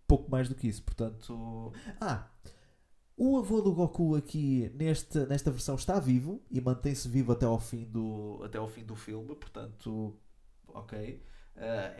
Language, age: Portuguese, 20-39